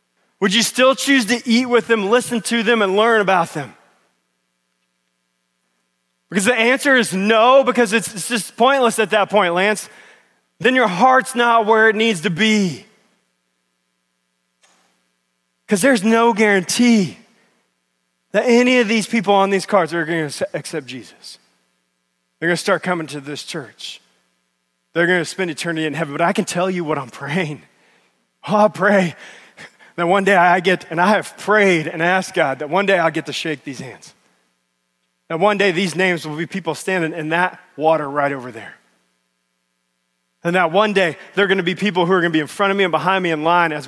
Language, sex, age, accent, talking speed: English, male, 20-39, American, 185 wpm